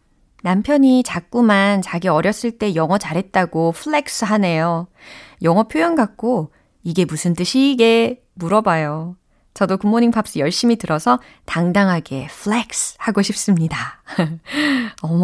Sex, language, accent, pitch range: female, Korean, native, 155-215 Hz